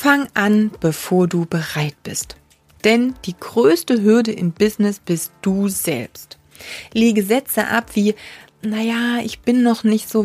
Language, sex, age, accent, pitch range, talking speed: German, female, 30-49, German, 195-230 Hz, 145 wpm